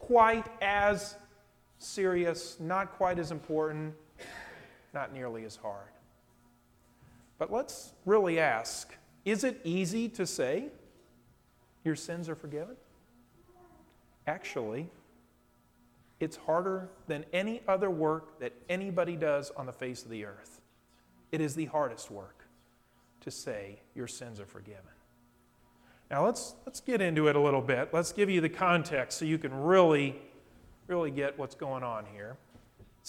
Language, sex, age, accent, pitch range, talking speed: English, male, 40-59, American, 135-205 Hz, 140 wpm